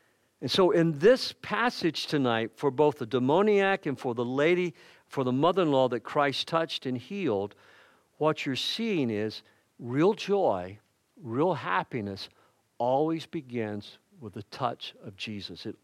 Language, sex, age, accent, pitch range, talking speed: English, male, 50-69, American, 125-170 Hz, 145 wpm